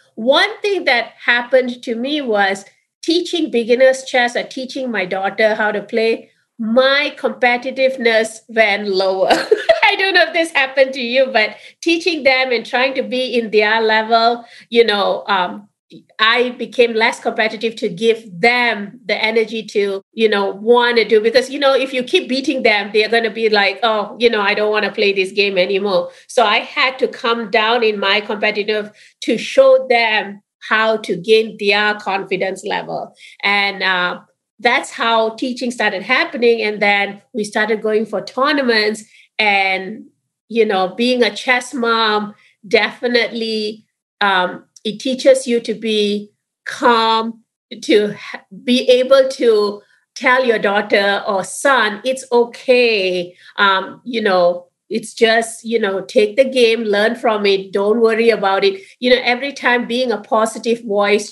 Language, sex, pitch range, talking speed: English, female, 205-245 Hz, 160 wpm